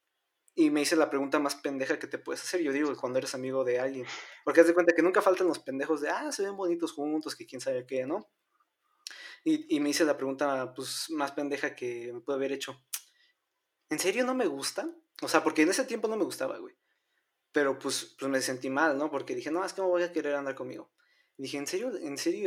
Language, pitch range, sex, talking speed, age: Spanish, 145-235 Hz, male, 240 wpm, 20-39